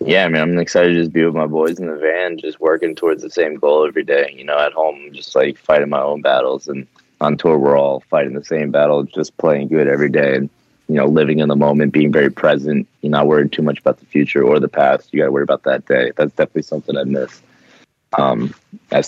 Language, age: English, 20-39